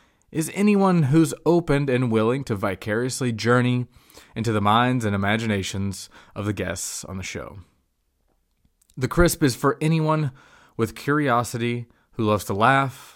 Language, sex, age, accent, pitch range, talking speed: English, male, 20-39, American, 105-135 Hz, 140 wpm